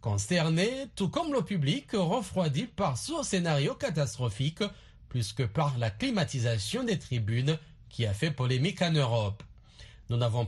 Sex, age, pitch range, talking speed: male, 40-59, 120-170 Hz, 145 wpm